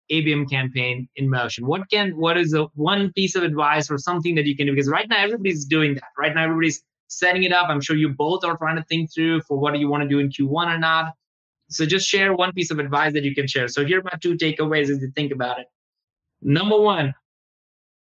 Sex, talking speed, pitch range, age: male, 245 wpm, 145-170 Hz, 20-39